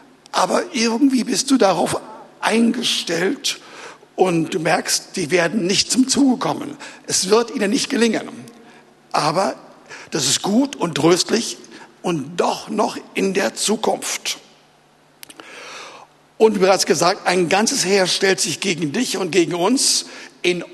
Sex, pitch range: male, 185-275 Hz